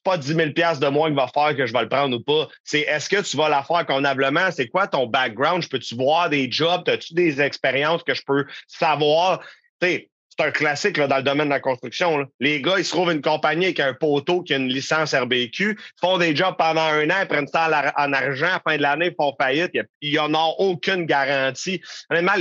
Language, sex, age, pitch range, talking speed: French, male, 30-49, 140-175 Hz, 250 wpm